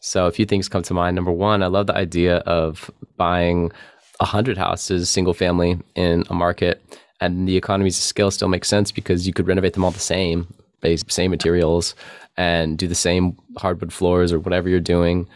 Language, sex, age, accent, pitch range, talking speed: English, male, 20-39, American, 85-100 Hz, 205 wpm